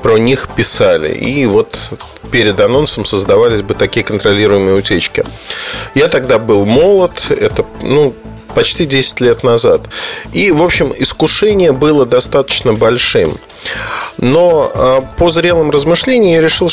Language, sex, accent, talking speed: Russian, male, native, 125 wpm